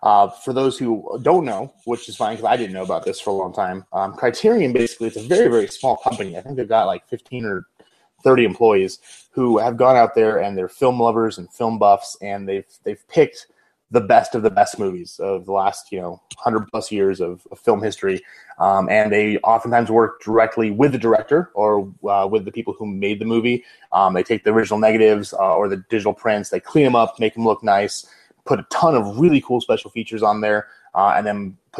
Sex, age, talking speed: male, 30-49, 230 wpm